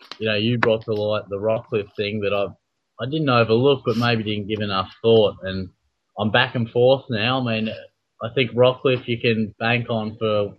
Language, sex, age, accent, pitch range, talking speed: English, male, 30-49, Australian, 105-120 Hz, 205 wpm